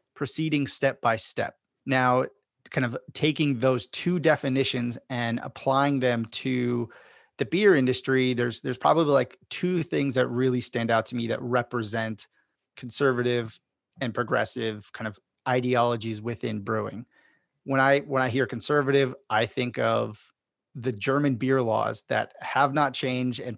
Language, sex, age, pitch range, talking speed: English, male, 30-49, 120-140 Hz, 145 wpm